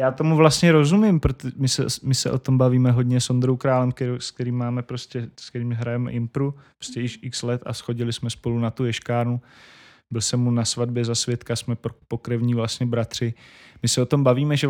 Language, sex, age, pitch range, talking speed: Slovak, male, 20-39, 115-130 Hz, 215 wpm